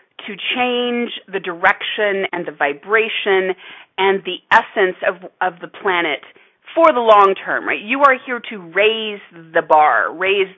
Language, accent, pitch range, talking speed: English, American, 190-260 Hz, 155 wpm